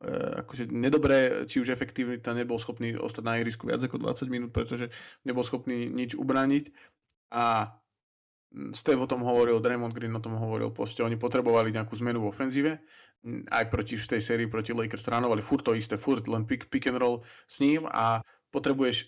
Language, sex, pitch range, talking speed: Slovak, male, 110-125 Hz, 175 wpm